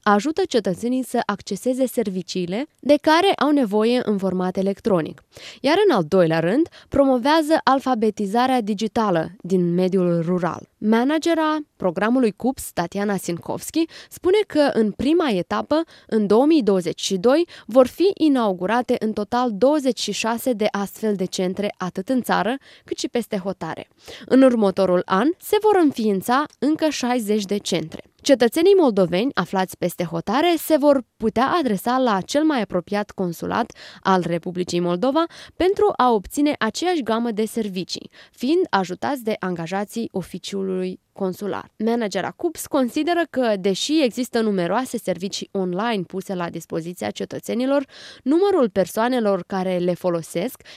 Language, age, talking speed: Romanian, 20-39, 130 wpm